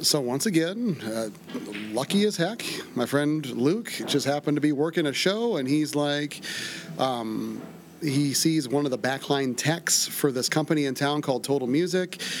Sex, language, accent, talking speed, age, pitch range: male, English, American, 175 wpm, 40-59, 130-165 Hz